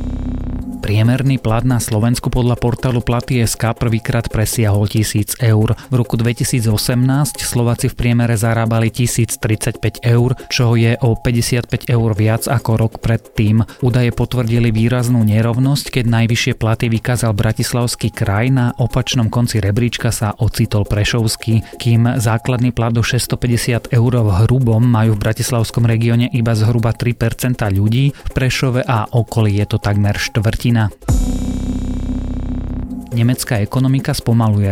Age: 30-49